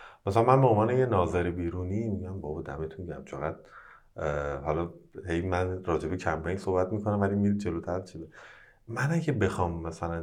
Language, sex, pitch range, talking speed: Persian, male, 80-105 Hz, 160 wpm